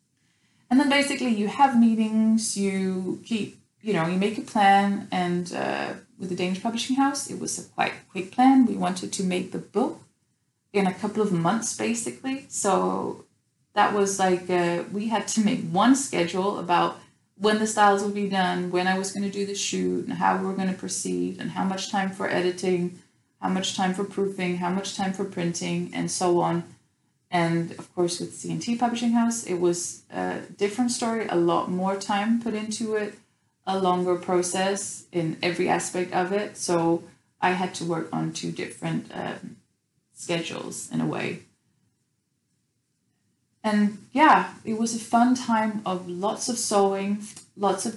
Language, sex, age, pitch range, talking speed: English, female, 20-39, 180-215 Hz, 180 wpm